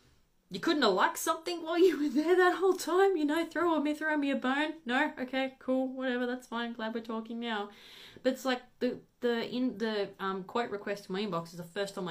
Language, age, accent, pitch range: English, 20-39, Australian, 175-250 Hz